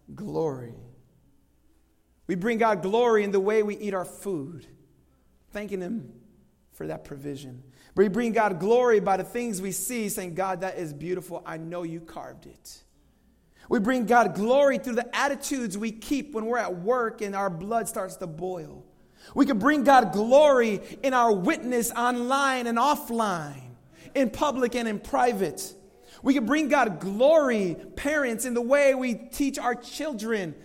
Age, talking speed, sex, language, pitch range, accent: 30-49, 165 wpm, male, English, 185-255 Hz, American